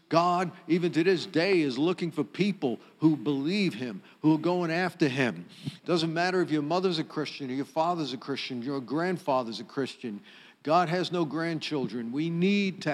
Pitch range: 140-180 Hz